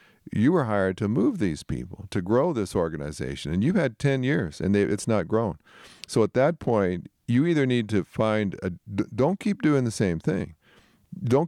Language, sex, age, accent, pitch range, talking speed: English, male, 50-69, American, 100-130 Hz, 200 wpm